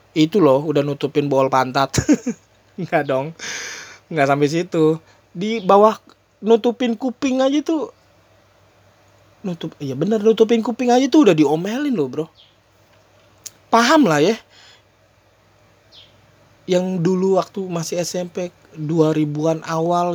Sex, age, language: male, 20-39, Indonesian